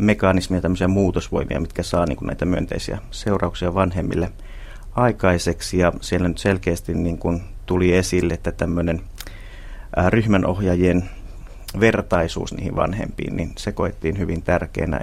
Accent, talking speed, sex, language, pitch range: native, 120 wpm, male, Finnish, 90-100 Hz